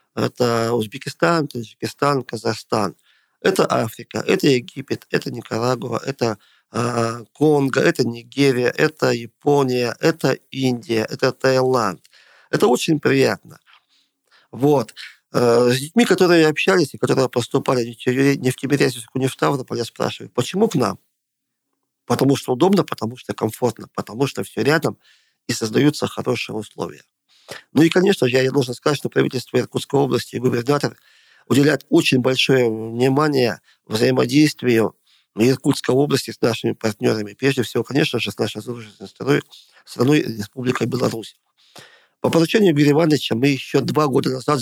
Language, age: Russian, 40-59